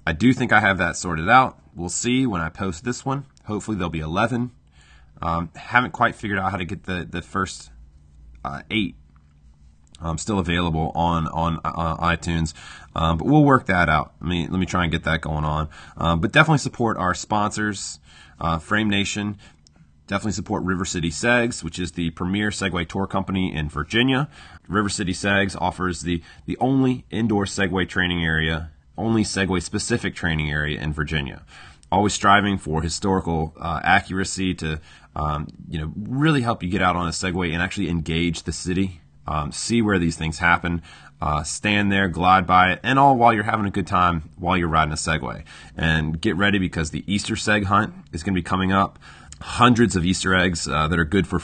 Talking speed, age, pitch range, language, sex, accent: 190 wpm, 30-49, 80-100 Hz, English, male, American